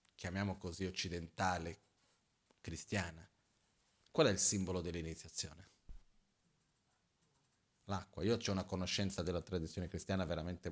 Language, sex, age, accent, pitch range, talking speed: Italian, male, 40-59, native, 90-105 Hz, 100 wpm